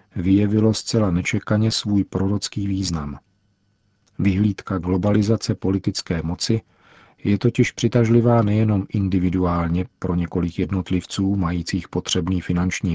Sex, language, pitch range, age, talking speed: male, Czech, 95-105 Hz, 40-59, 95 wpm